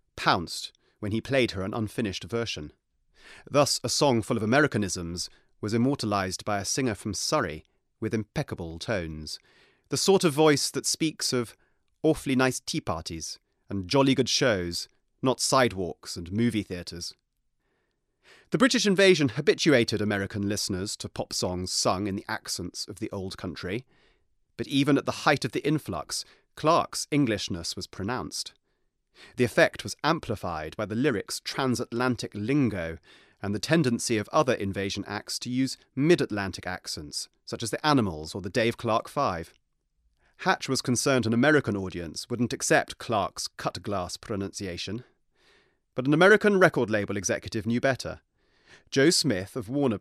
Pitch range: 100-135 Hz